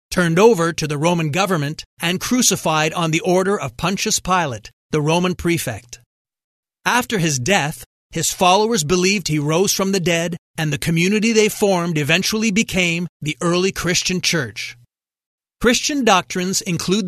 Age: 40-59